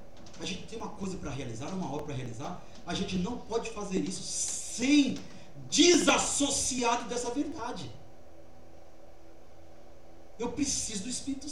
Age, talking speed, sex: 40-59, 130 wpm, male